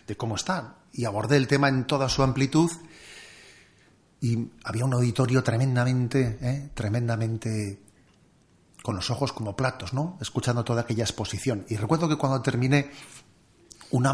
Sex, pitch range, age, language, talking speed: male, 115-140 Hz, 40-59, Spanish, 145 wpm